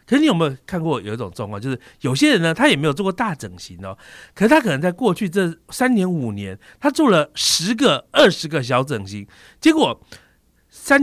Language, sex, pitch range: Chinese, male, 125-210 Hz